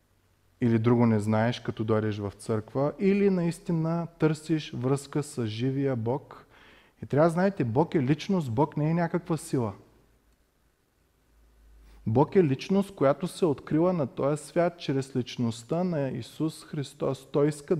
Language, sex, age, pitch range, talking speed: Bulgarian, male, 30-49, 115-155 Hz, 140 wpm